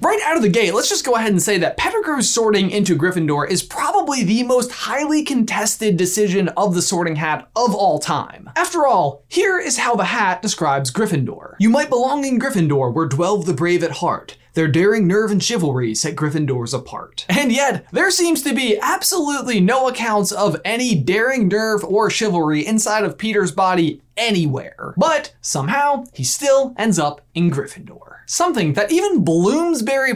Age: 20-39